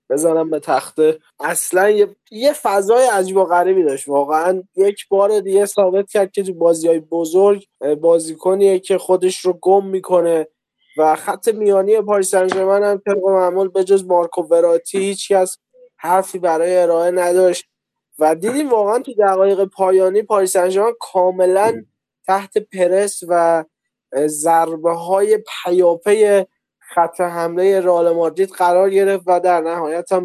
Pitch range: 160-195 Hz